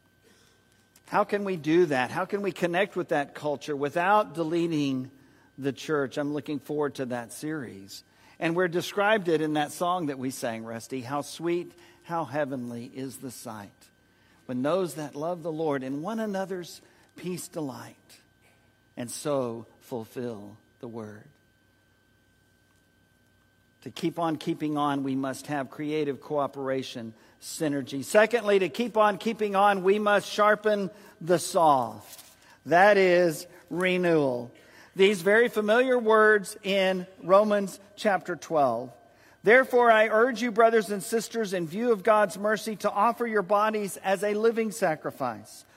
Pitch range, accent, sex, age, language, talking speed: 135-210 Hz, American, male, 50-69, English, 145 wpm